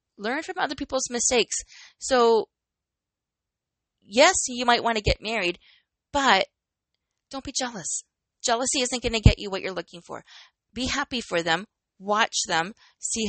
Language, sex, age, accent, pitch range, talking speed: English, female, 20-39, American, 185-265 Hz, 155 wpm